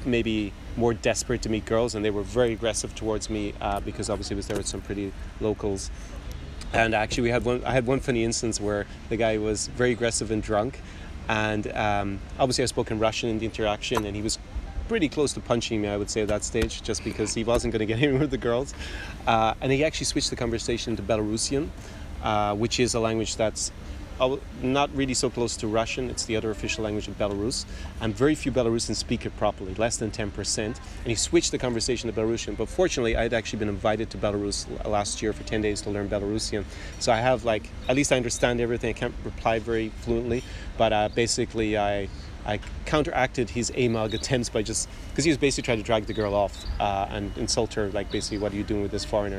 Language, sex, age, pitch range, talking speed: English, male, 30-49, 100-120 Hz, 230 wpm